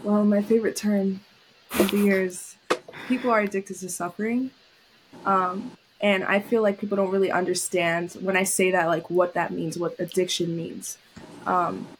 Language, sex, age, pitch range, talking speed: English, female, 20-39, 175-205 Hz, 170 wpm